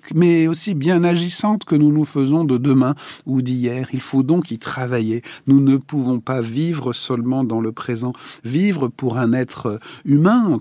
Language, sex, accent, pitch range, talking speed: French, male, French, 120-150 Hz, 180 wpm